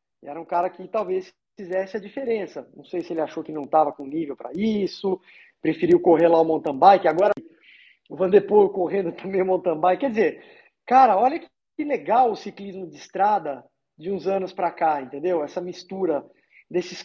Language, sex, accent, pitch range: Portuguese, male, Brazilian, 170-230 Hz